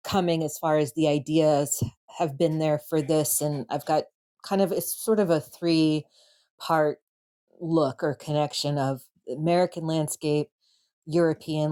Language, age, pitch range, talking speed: English, 30-49, 140-160 Hz, 150 wpm